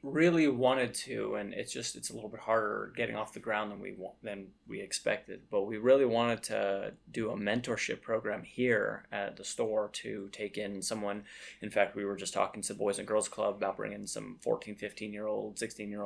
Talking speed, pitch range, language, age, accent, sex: 220 wpm, 105-130 Hz, English, 20-39, American, male